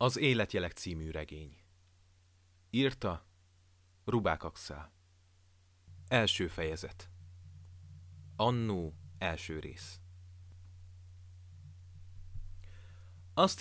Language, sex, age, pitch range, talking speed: Hungarian, male, 30-49, 90-95 Hz, 55 wpm